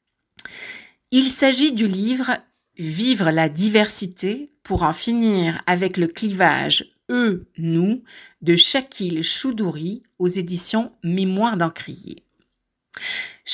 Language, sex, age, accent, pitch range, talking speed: French, female, 50-69, French, 175-230 Hz, 125 wpm